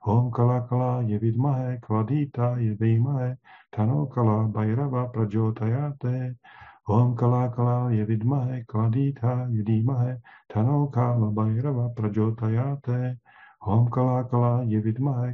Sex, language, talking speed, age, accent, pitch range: male, Czech, 85 wpm, 50-69, native, 110-125 Hz